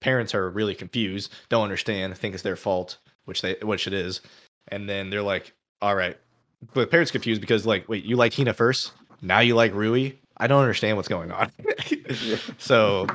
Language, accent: English, American